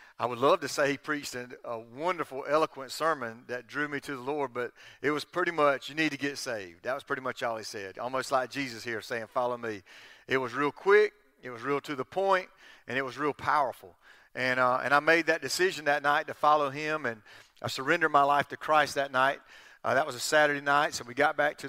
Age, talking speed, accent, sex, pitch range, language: 40-59, 245 wpm, American, male, 125-155 Hz, English